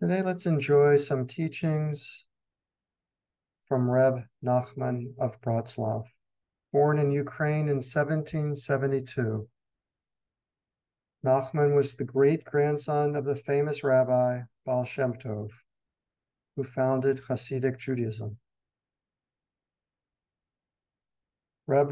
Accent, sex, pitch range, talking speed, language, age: American, male, 125-145 Hz, 85 wpm, English, 50-69